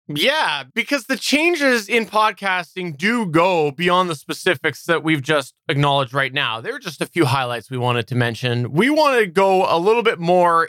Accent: American